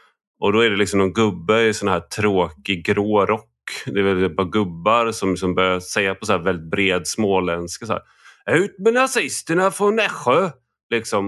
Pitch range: 95-115 Hz